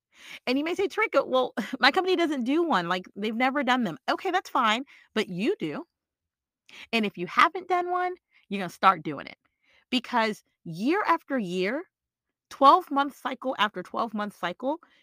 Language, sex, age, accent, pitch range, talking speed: English, female, 40-59, American, 195-295 Hz, 170 wpm